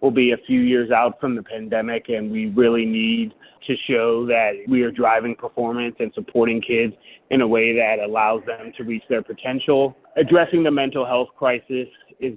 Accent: American